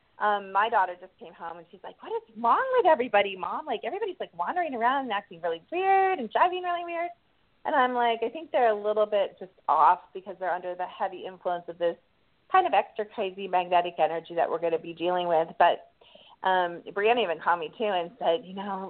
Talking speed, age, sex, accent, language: 225 wpm, 30-49, female, American, English